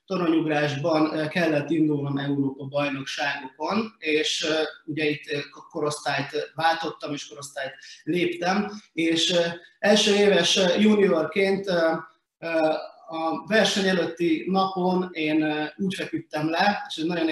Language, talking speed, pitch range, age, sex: Hungarian, 90 wpm, 150-185 Hz, 30-49, male